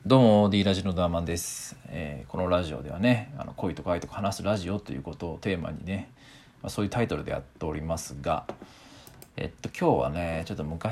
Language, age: Japanese, 40-59